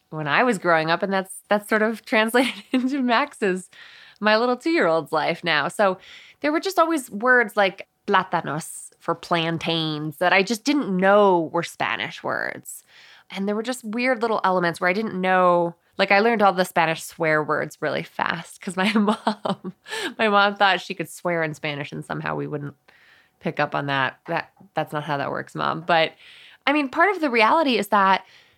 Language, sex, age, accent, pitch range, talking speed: English, female, 20-39, American, 165-220 Hz, 195 wpm